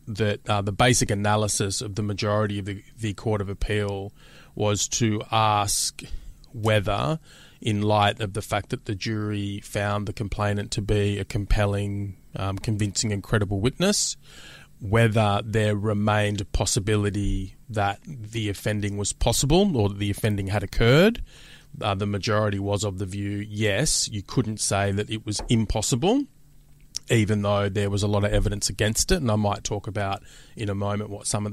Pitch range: 100-115 Hz